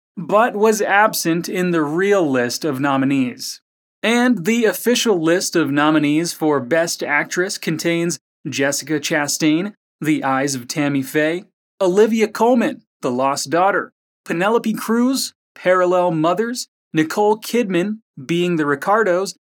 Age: 30-49